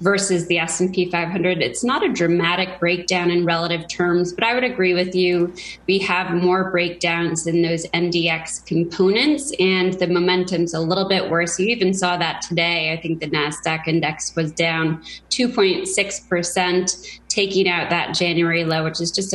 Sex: female